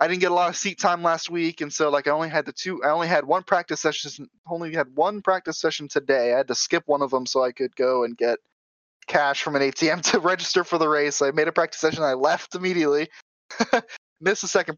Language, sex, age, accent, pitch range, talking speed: English, male, 10-29, American, 135-175 Hz, 265 wpm